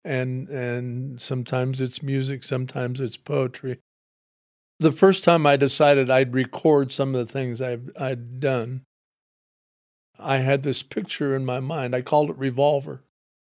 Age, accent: 50-69, American